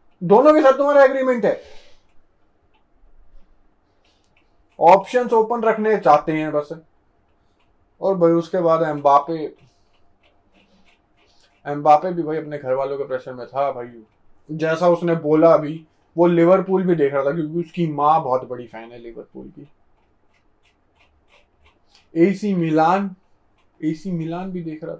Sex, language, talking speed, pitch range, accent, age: male, Hindi, 130 wpm, 130-175 Hz, native, 20-39